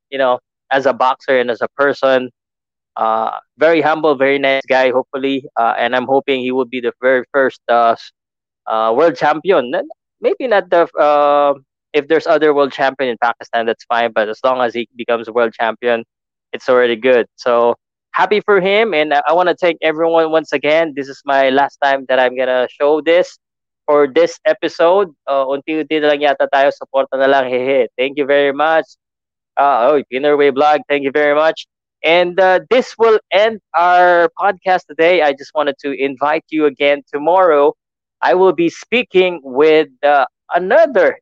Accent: native